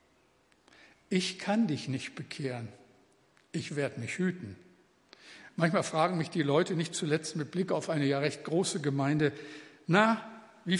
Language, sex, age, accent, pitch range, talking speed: German, male, 60-79, German, 150-200 Hz, 145 wpm